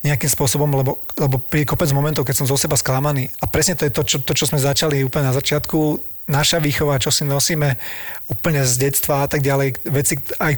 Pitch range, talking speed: 135-150 Hz, 215 wpm